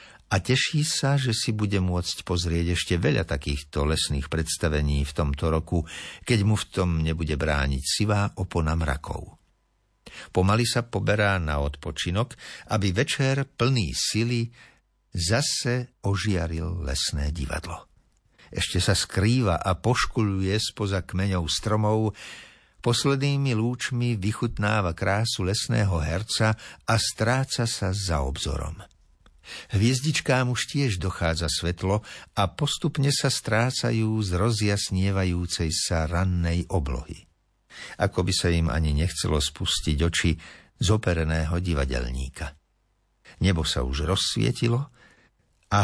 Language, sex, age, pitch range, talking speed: Slovak, male, 60-79, 85-115 Hz, 115 wpm